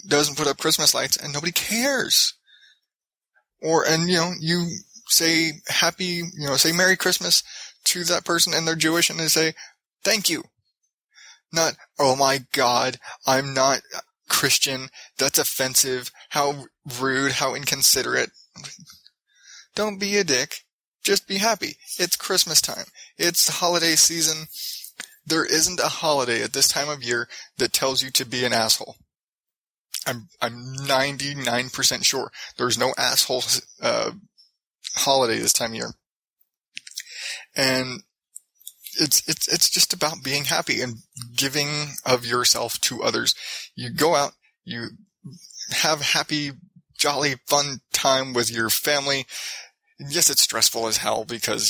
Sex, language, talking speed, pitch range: male, English, 135 wpm, 130-170 Hz